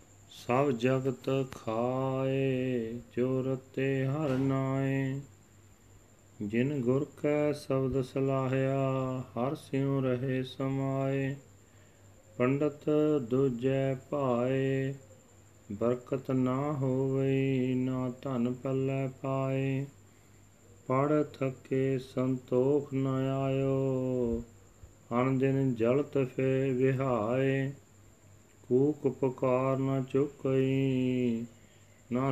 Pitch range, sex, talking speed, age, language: 120-135 Hz, male, 70 wpm, 40-59, Punjabi